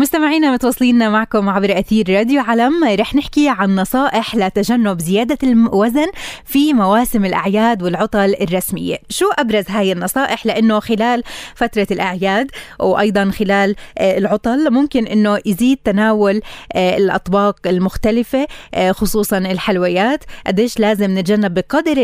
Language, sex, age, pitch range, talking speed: Arabic, female, 20-39, 195-245 Hz, 115 wpm